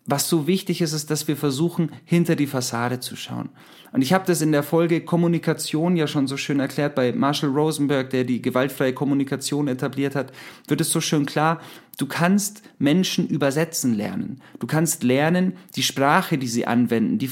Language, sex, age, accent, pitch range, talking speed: German, male, 40-59, German, 140-170 Hz, 185 wpm